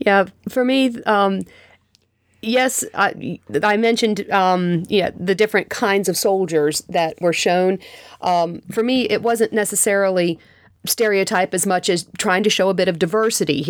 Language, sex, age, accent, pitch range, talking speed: English, female, 40-59, American, 165-195 Hz, 155 wpm